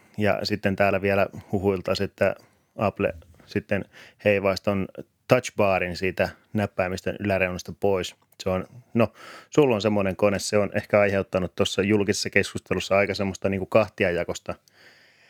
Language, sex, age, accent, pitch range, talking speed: Finnish, male, 30-49, native, 95-110 Hz, 130 wpm